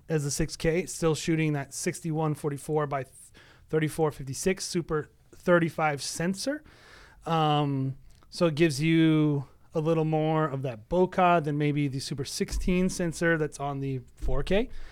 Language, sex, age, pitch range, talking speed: English, male, 30-49, 145-180 Hz, 130 wpm